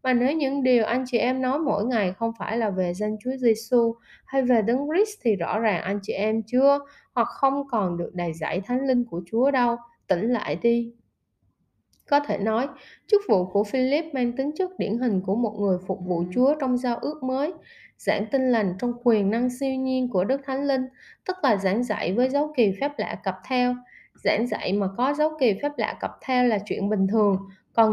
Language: Vietnamese